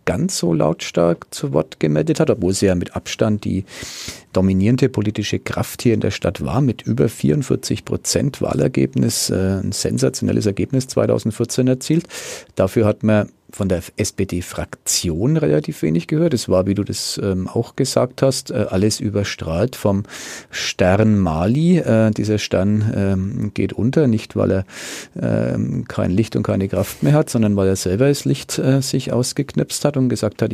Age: 40-59